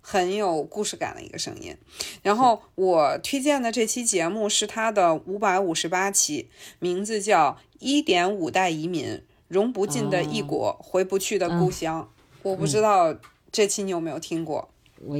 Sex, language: female, Chinese